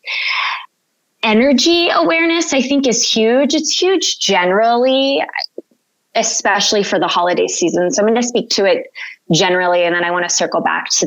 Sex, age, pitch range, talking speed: female, 20-39, 180-260 Hz, 165 wpm